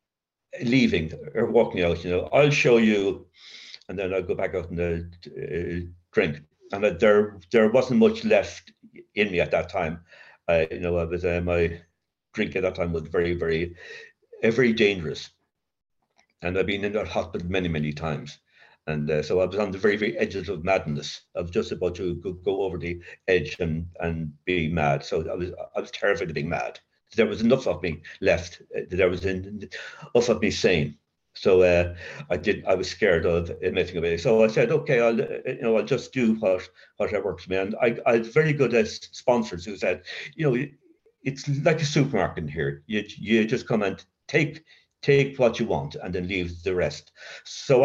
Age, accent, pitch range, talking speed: 60-79, British, 85-130 Hz, 200 wpm